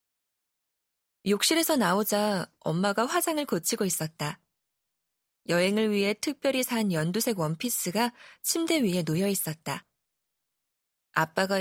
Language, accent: Korean, native